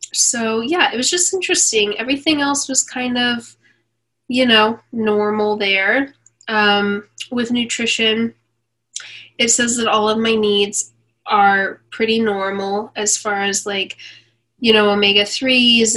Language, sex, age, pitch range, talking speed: English, female, 10-29, 200-225 Hz, 130 wpm